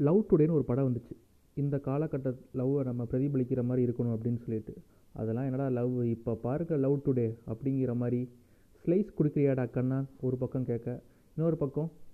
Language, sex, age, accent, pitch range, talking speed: Tamil, male, 30-49, native, 115-145 Hz, 155 wpm